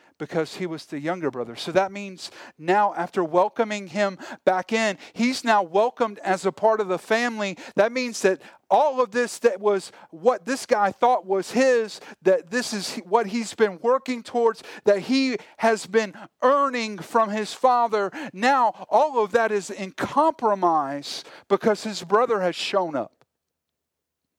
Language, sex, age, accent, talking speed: English, male, 40-59, American, 165 wpm